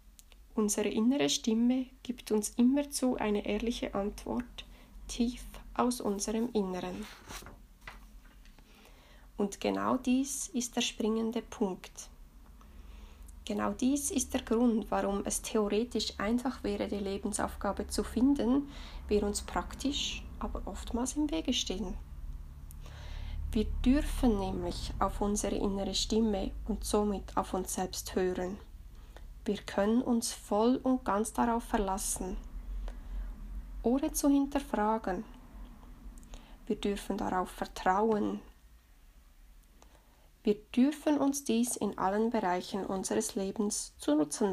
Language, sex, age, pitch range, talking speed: German, female, 20-39, 190-245 Hz, 110 wpm